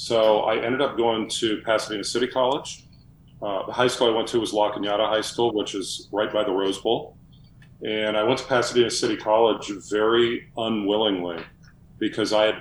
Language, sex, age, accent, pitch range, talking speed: English, male, 40-59, American, 100-120 Hz, 190 wpm